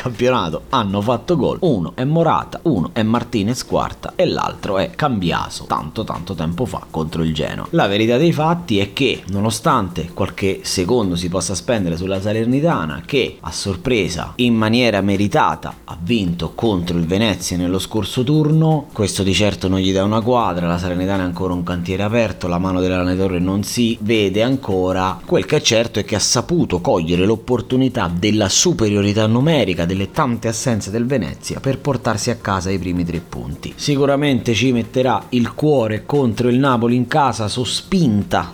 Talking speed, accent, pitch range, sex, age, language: 170 wpm, native, 95-120 Hz, male, 30-49, Italian